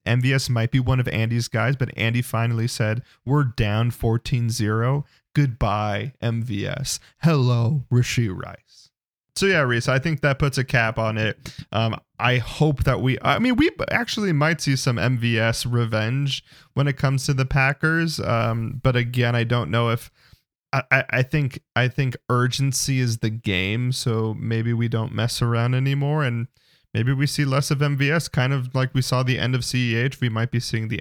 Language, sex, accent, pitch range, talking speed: English, male, American, 115-140 Hz, 185 wpm